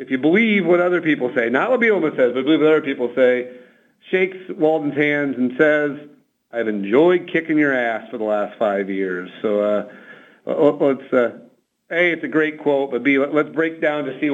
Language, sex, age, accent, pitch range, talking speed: English, male, 50-69, American, 130-170 Hz, 200 wpm